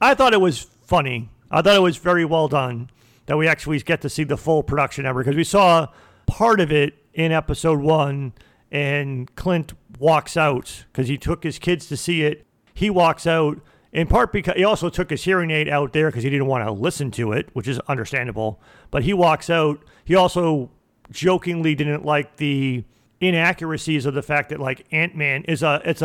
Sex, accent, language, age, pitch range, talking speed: male, American, English, 40-59, 135-170 Hz, 205 wpm